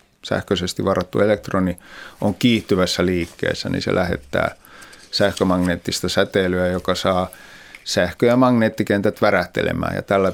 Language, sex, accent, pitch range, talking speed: Finnish, male, native, 90-115 Hz, 110 wpm